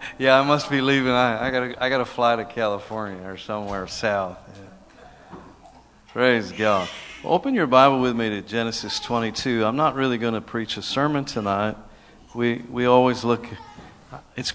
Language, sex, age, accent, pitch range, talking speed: English, male, 50-69, American, 105-125 Hz, 175 wpm